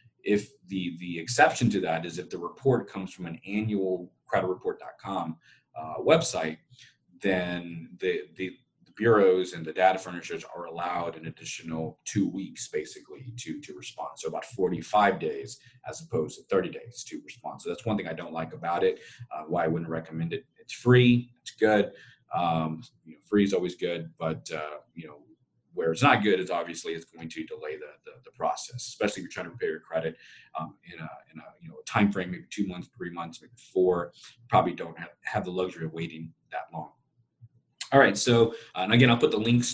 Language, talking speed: English, 205 wpm